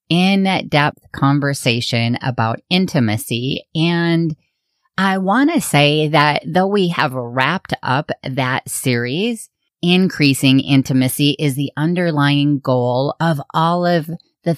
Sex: female